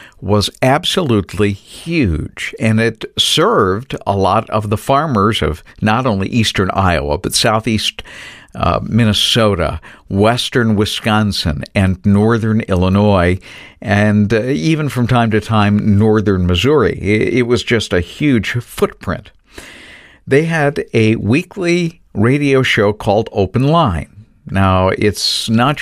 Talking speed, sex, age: 125 wpm, male, 60-79